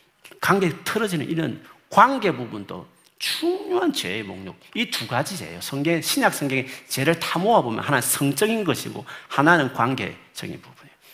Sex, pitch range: male, 125-185 Hz